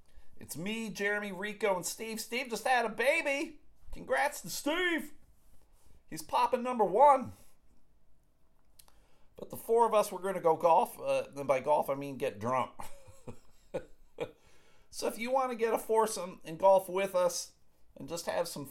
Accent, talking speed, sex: American, 165 wpm, male